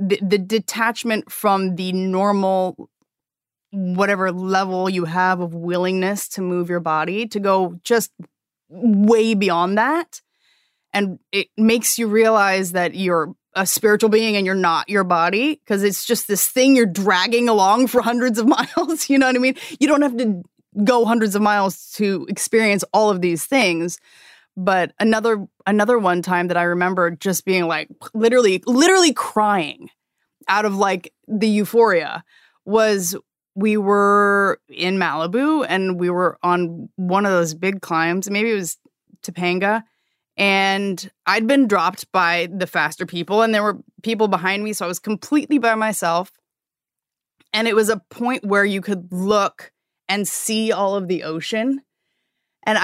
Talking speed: 160 wpm